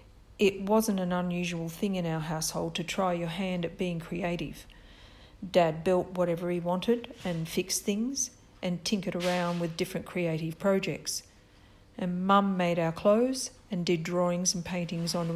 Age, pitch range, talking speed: 50-69, 165-195 Hz, 165 wpm